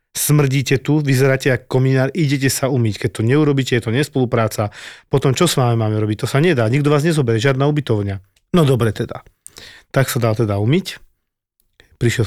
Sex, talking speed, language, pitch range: male, 180 wpm, Slovak, 115-140 Hz